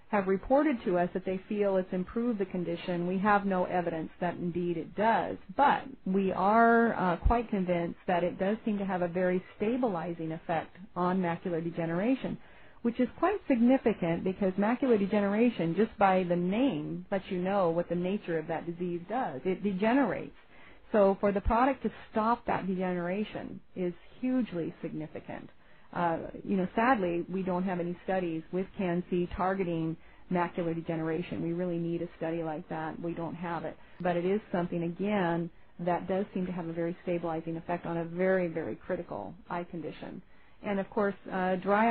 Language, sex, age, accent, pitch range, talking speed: English, female, 40-59, American, 170-200 Hz, 175 wpm